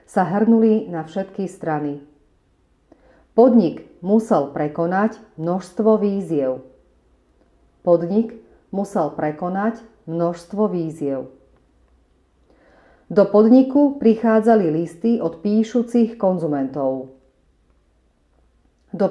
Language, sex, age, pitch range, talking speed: Slovak, female, 40-59, 145-220 Hz, 70 wpm